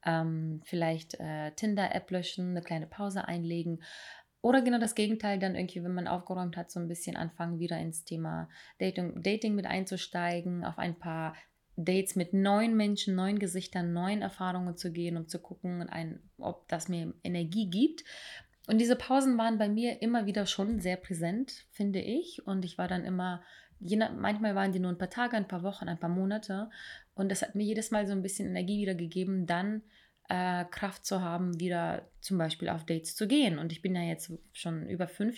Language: German